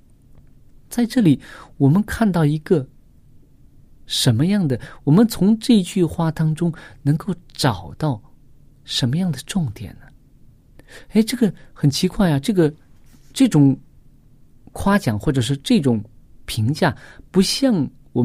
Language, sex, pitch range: Chinese, male, 125-175 Hz